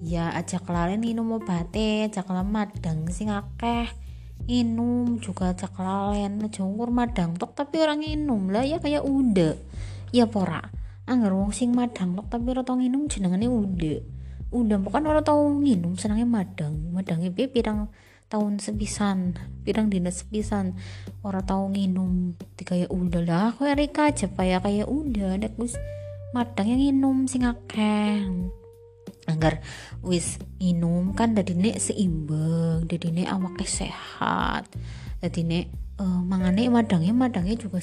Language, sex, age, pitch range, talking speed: Indonesian, female, 20-39, 155-210 Hz, 130 wpm